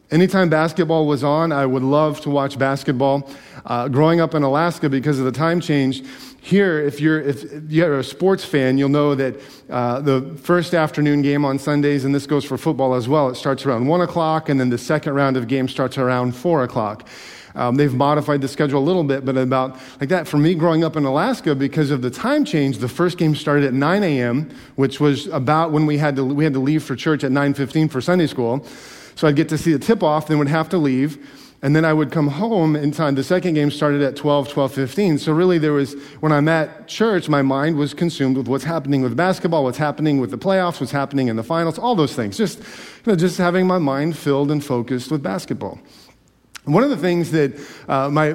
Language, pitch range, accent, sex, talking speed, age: English, 135-160 Hz, American, male, 230 wpm, 40-59